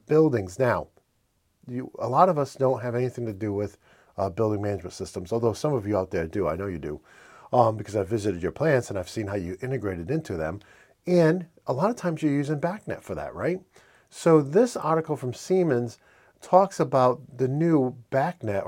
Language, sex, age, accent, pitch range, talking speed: English, male, 50-69, American, 110-145 Hz, 200 wpm